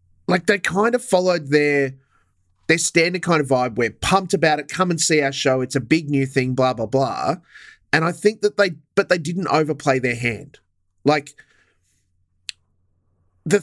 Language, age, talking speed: English, 30-49, 180 wpm